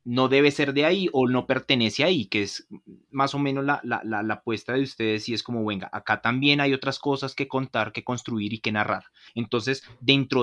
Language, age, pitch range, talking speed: Spanish, 30-49, 105-135 Hz, 225 wpm